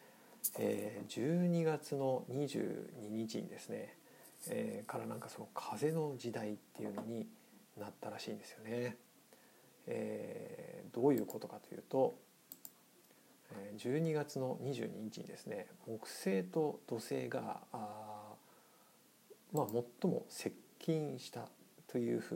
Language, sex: Japanese, male